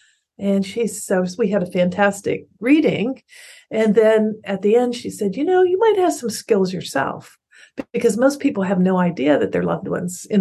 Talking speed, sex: 195 wpm, female